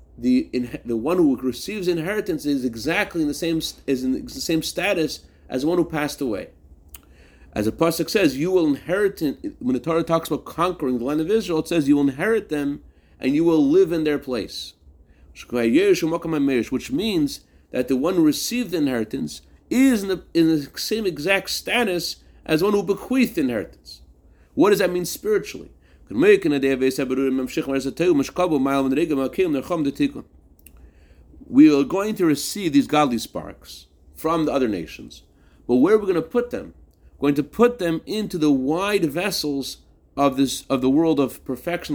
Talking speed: 165 wpm